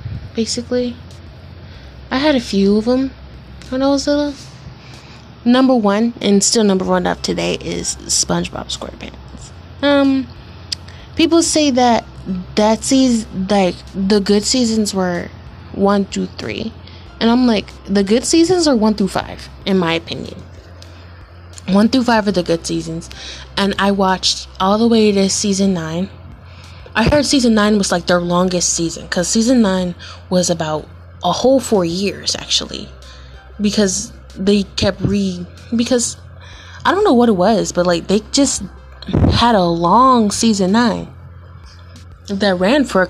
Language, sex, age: English, female, 20-39